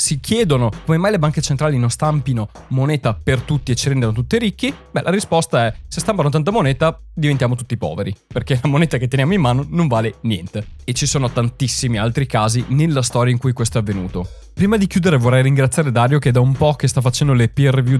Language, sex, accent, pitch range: Italian, male, native, 120-155 Hz